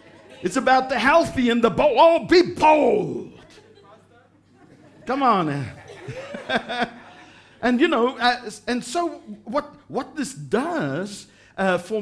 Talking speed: 125 wpm